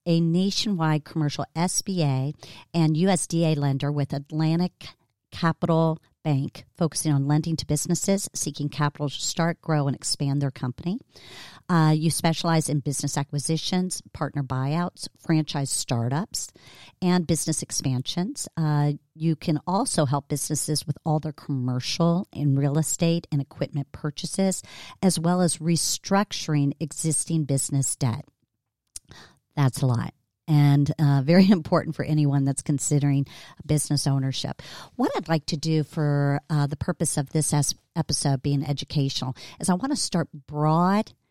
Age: 50-69